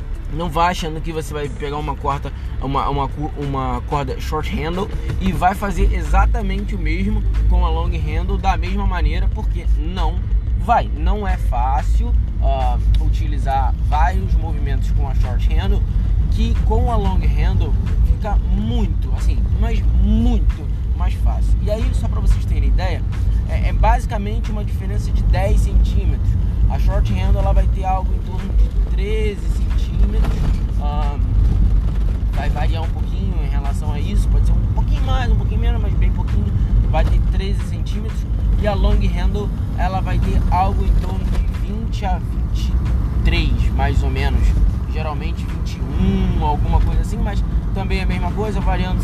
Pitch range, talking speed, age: 90-100 Hz, 160 wpm, 20-39